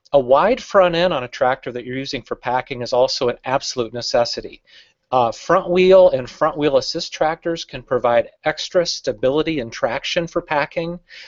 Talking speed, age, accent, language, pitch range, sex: 175 wpm, 40-59, American, English, 125-165 Hz, male